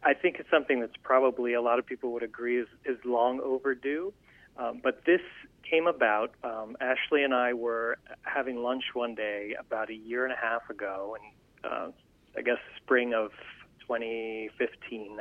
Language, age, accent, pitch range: English, 30-49, American, 115-150 Hz